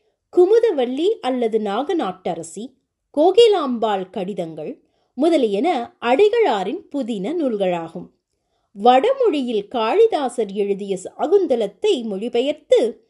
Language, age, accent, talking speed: Tamil, 20-39, native, 65 wpm